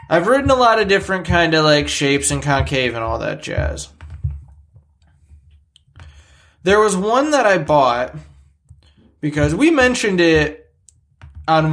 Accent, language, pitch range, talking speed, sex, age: American, English, 95-155 Hz, 140 wpm, male, 20-39